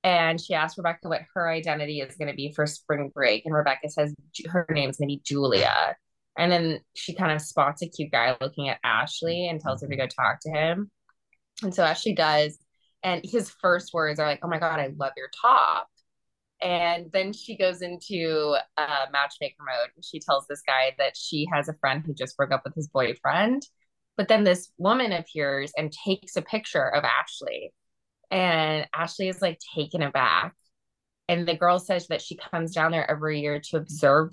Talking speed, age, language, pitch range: 205 wpm, 20-39, English, 145-180 Hz